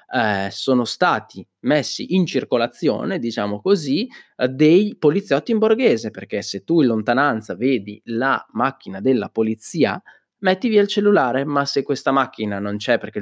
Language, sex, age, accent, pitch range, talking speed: Italian, male, 20-39, native, 110-170 Hz, 150 wpm